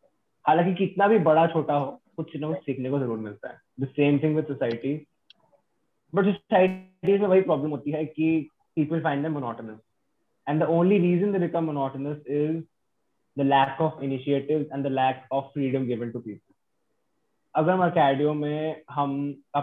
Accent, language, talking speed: Indian, English, 125 wpm